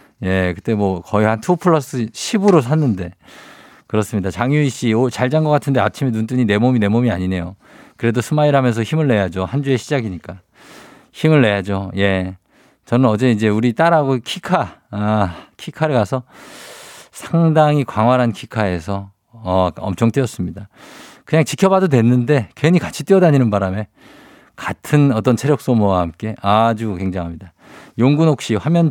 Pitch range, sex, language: 100-145 Hz, male, Korean